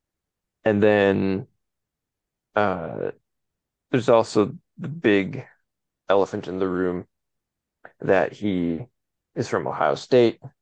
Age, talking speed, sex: 20-39, 95 wpm, male